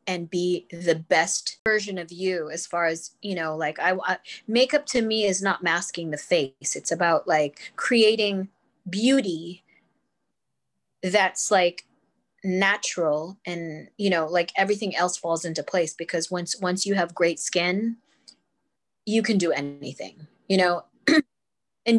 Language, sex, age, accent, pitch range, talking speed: English, female, 20-39, American, 170-205 Hz, 145 wpm